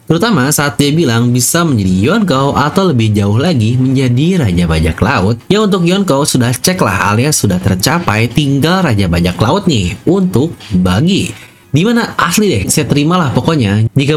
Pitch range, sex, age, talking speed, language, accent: 105-145 Hz, male, 30-49, 155 wpm, English, Indonesian